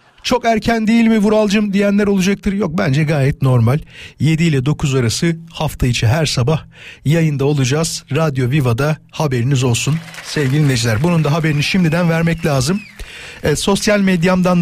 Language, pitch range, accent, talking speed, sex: Turkish, 150-195 Hz, native, 150 wpm, male